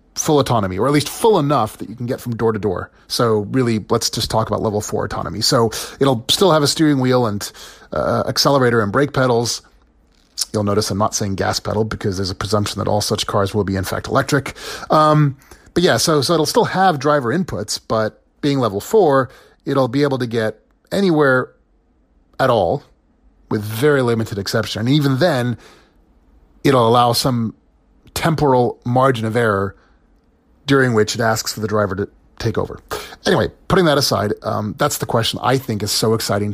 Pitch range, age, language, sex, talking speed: 105-140 Hz, 30-49, English, male, 190 wpm